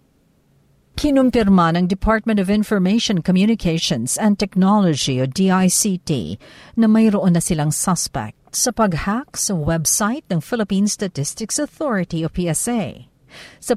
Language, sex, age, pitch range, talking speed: Filipino, female, 50-69, 165-220 Hz, 115 wpm